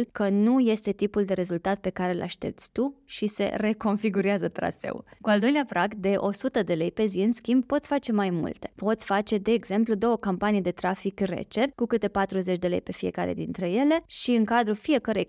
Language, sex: Romanian, female